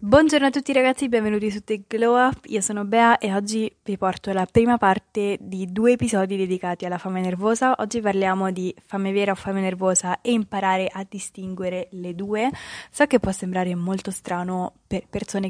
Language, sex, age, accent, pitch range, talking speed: Italian, female, 20-39, native, 185-215 Hz, 185 wpm